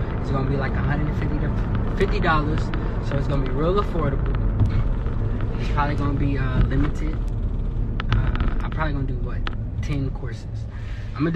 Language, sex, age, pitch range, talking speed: English, male, 20-39, 105-130 Hz, 145 wpm